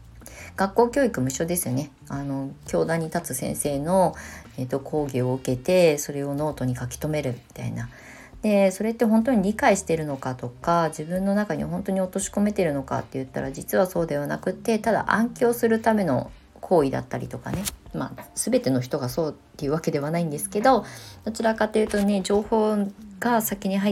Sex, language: female, Japanese